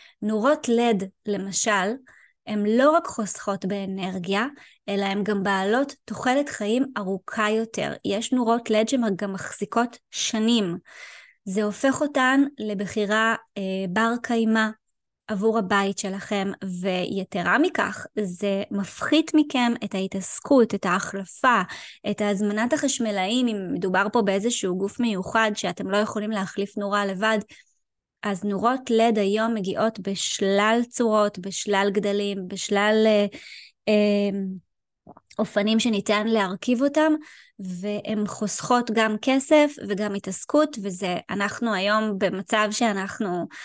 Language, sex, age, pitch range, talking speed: Hebrew, female, 20-39, 200-245 Hz, 115 wpm